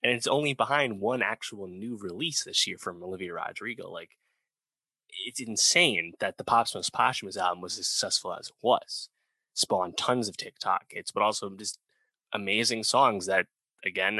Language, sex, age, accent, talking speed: English, male, 20-39, American, 175 wpm